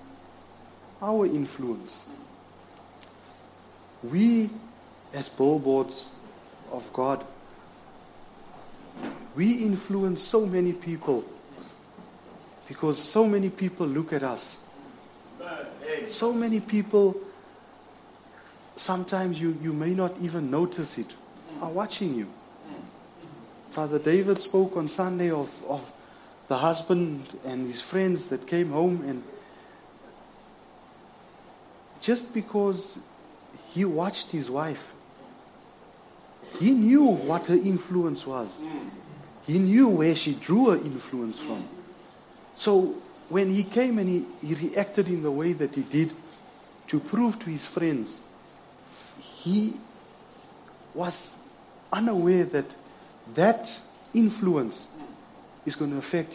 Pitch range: 145-205 Hz